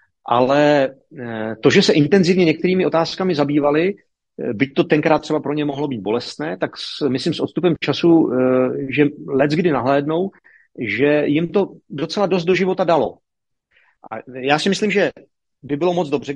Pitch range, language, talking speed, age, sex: 140-170 Hz, Czech, 160 wpm, 40-59, male